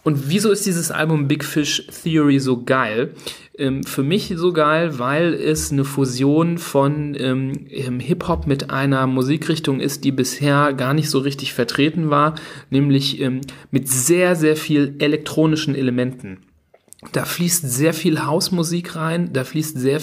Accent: German